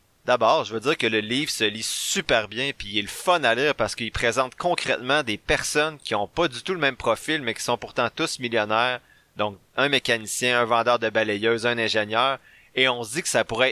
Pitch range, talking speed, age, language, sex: 110-135 Hz, 235 wpm, 30-49, French, male